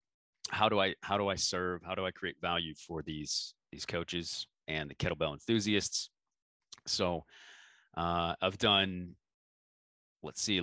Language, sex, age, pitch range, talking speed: English, male, 30-49, 85-100 Hz, 145 wpm